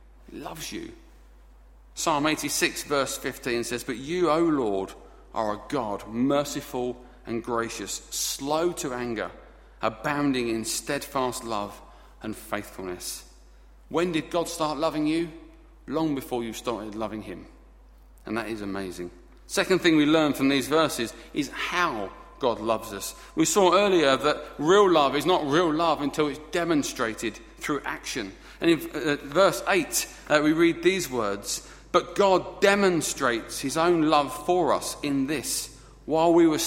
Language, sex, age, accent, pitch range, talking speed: English, male, 40-59, British, 115-175 Hz, 150 wpm